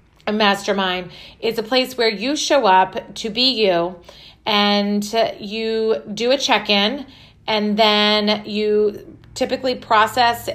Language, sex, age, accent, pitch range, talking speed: English, female, 40-59, American, 195-225 Hz, 130 wpm